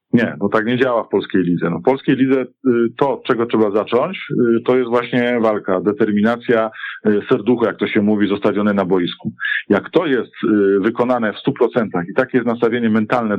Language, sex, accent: Polish, male, native